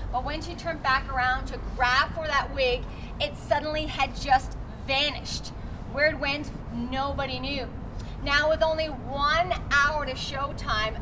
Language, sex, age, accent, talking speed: English, female, 30-49, American, 150 wpm